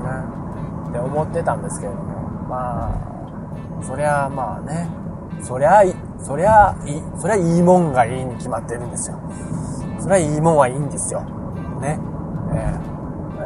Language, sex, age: Japanese, male, 20-39